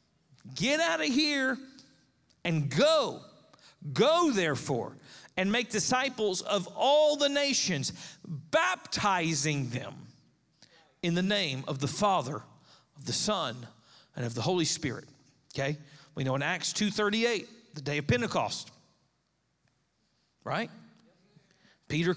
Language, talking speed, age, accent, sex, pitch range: English, 115 wpm, 40-59, American, male, 145-210 Hz